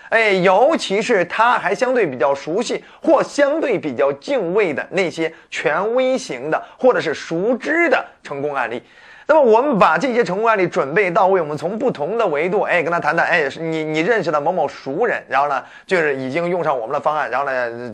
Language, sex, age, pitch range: Chinese, male, 30-49, 155-220 Hz